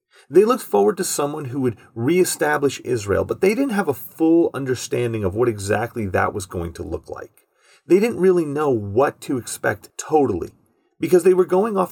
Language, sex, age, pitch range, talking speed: English, male, 30-49, 125-175 Hz, 190 wpm